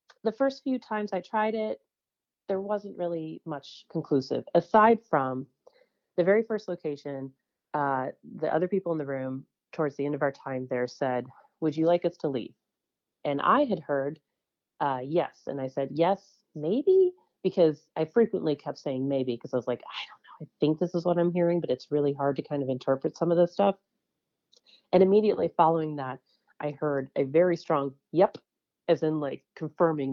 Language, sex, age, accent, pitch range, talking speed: English, female, 30-49, American, 140-200 Hz, 190 wpm